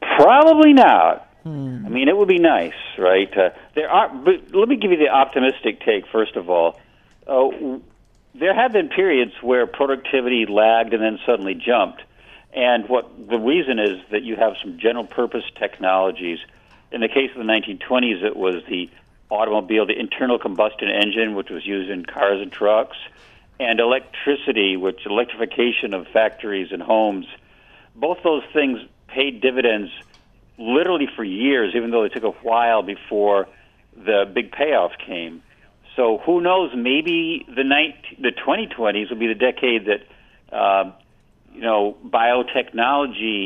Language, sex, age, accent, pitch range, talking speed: English, male, 50-69, American, 105-140 Hz, 155 wpm